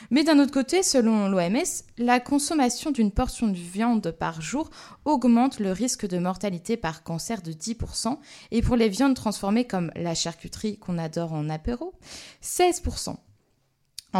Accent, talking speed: French, 150 wpm